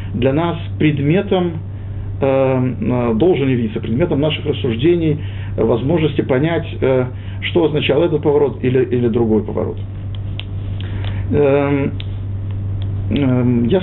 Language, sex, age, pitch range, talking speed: Russian, male, 50-69, 100-140 Hz, 80 wpm